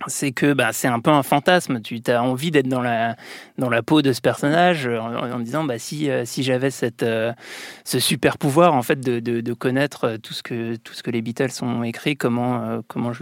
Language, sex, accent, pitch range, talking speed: French, male, French, 120-150 Hz, 240 wpm